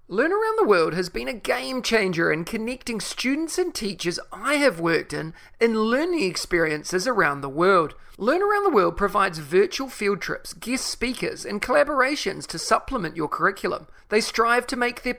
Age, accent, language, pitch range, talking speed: 30-49, Australian, English, 185-275 Hz, 180 wpm